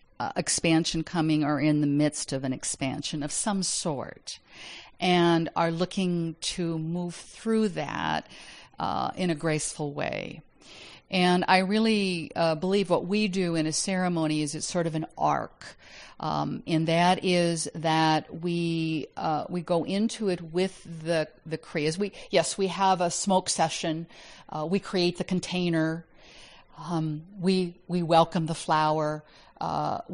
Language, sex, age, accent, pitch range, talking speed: English, female, 50-69, American, 150-175 Hz, 155 wpm